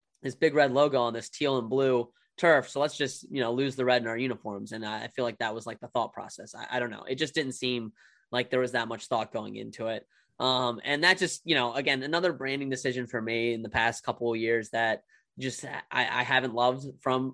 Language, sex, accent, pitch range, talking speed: English, male, American, 120-140 Hz, 255 wpm